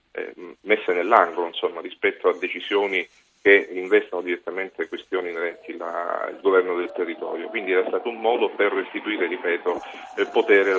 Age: 40-59